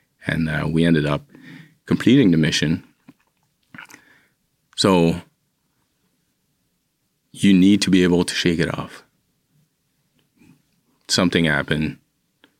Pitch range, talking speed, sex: 80-90 Hz, 95 wpm, male